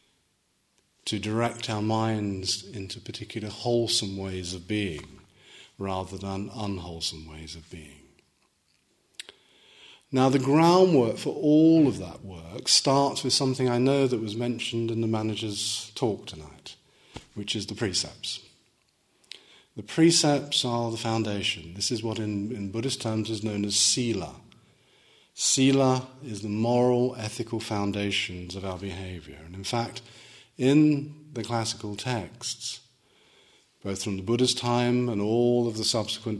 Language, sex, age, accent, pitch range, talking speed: English, male, 40-59, British, 100-120 Hz, 135 wpm